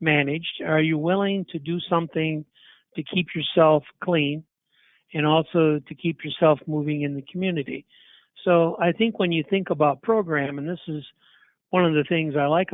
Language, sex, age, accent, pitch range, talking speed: English, male, 60-79, American, 150-180 Hz, 175 wpm